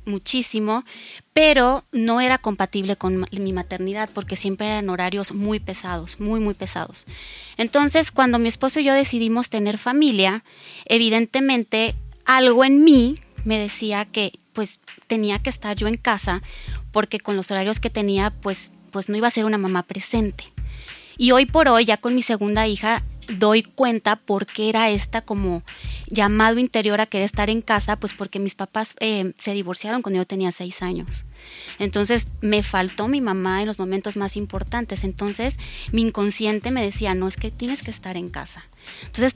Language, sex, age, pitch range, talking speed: Spanish, female, 20-39, 200-235 Hz, 175 wpm